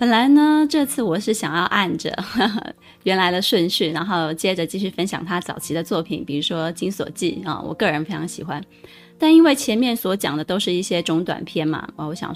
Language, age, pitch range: Chinese, 20-39, 165-230 Hz